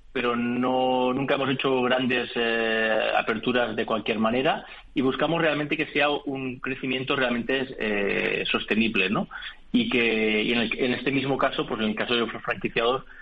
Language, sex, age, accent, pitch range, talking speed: Spanish, male, 30-49, Spanish, 115-130 Hz, 175 wpm